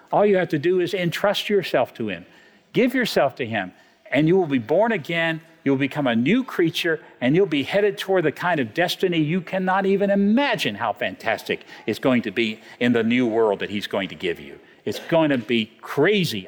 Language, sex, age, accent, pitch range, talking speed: English, male, 50-69, American, 135-205 Hz, 215 wpm